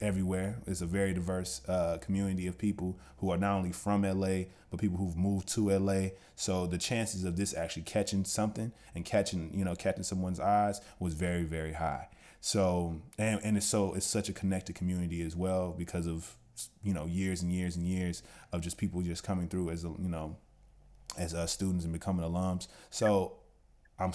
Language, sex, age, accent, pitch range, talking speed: English, male, 20-39, American, 90-105 Hz, 195 wpm